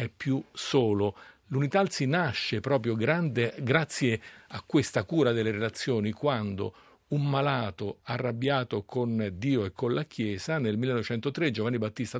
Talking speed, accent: 140 wpm, native